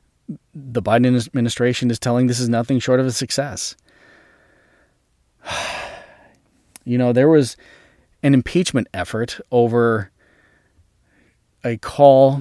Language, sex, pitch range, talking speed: English, male, 110-130 Hz, 105 wpm